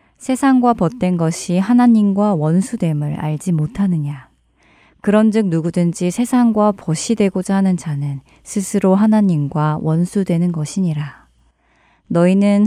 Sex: female